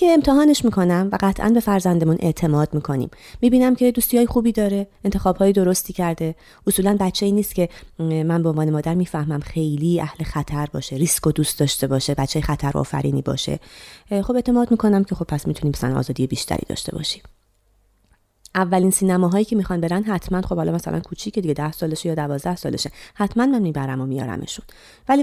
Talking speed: 180 wpm